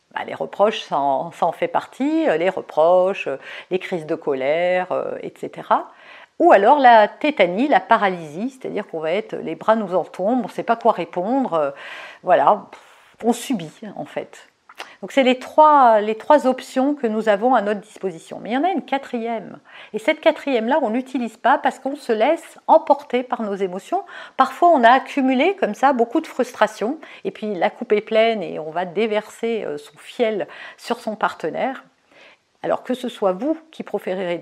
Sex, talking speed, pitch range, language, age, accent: female, 180 wpm, 200-270 Hz, French, 50-69, French